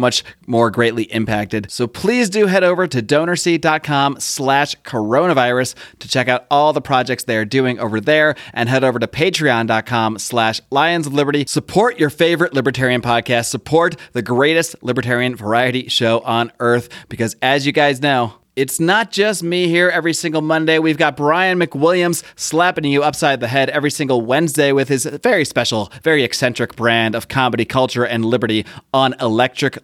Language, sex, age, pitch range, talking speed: English, male, 30-49, 120-150 Hz, 170 wpm